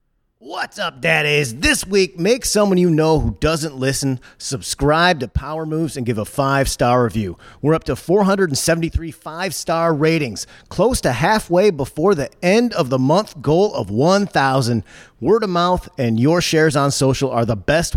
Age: 30-49